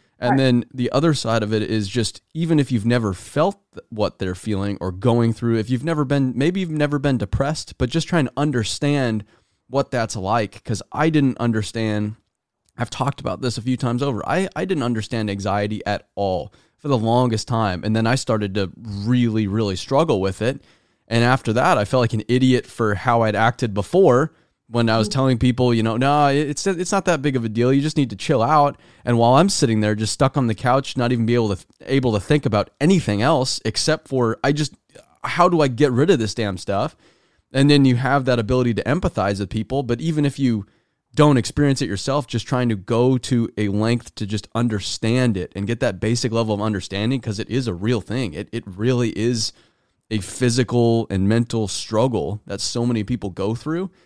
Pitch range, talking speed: 110-135 Hz, 220 wpm